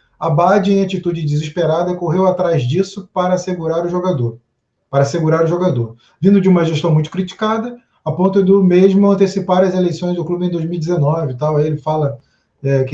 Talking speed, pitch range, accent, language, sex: 180 wpm, 160-195 Hz, Brazilian, Portuguese, male